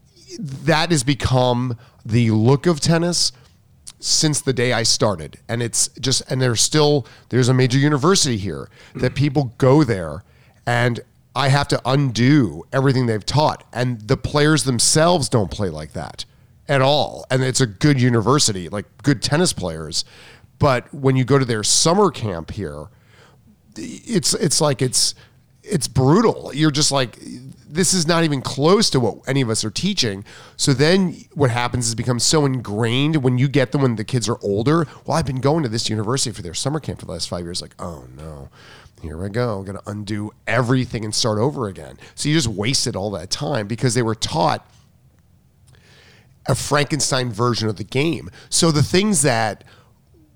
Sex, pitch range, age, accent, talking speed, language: male, 110-145 Hz, 40-59, American, 180 wpm, English